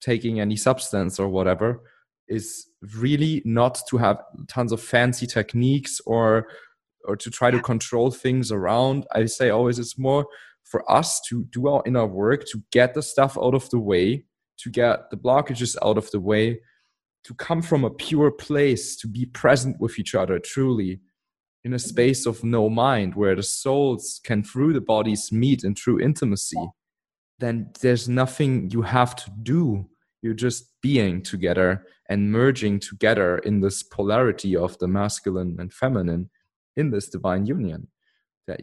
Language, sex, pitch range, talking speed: English, male, 110-130 Hz, 165 wpm